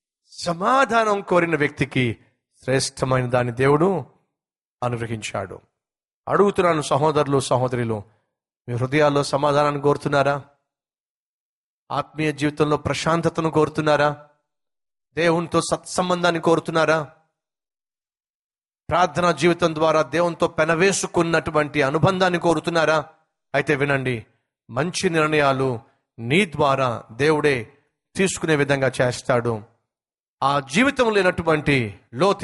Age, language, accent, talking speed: 30-49, Telugu, native, 80 wpm